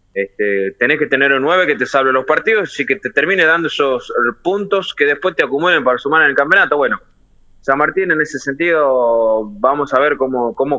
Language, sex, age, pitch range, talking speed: Spanish, male, 20-39, 125-160 Hz, 210 wpm